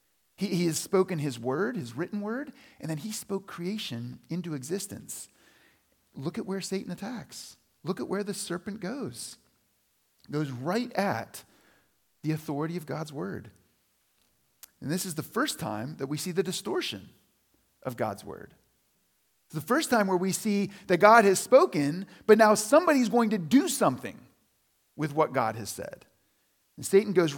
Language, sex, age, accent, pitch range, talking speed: English, male, 40-59, American, 130-190 Hz, 165 wpm